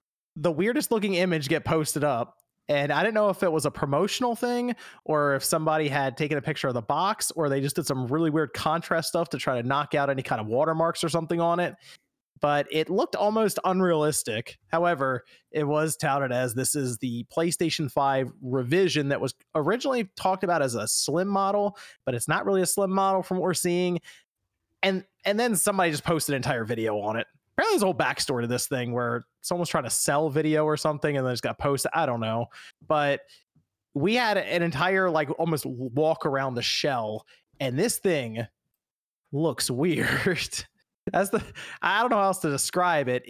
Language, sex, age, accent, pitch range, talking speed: English, male, 30-49, American, 140-180 Hz, 200 wpm